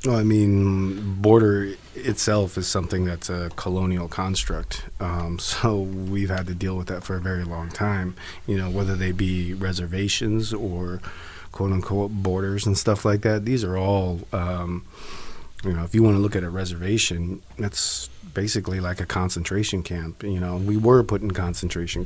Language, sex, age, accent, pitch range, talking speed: English, male, 30-49, American, 85-100 Hz, 175 wpm